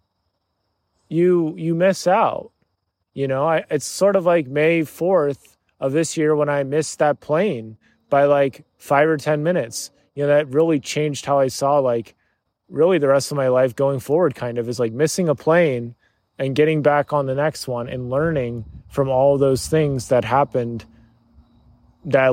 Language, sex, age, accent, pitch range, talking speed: English, male, 20-39, American, 125-160 Hz, 185 wpm